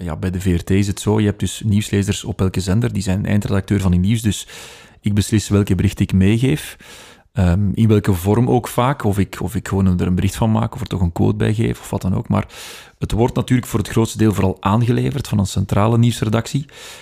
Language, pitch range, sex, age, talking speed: Dutch, 100-120 Hz, male, 30-49, 230 wpm